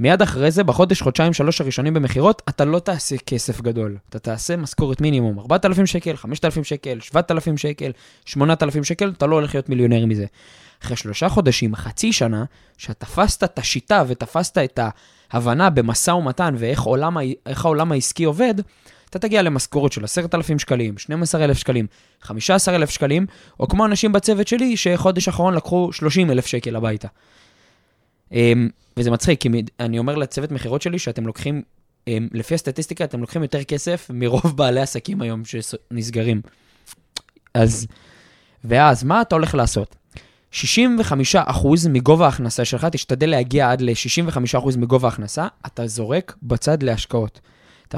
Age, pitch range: 20-39, 120-170 Hz